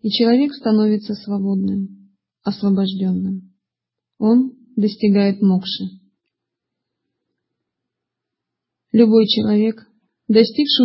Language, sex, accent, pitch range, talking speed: Russian, female, native, 195-230 Hz, 60 wpm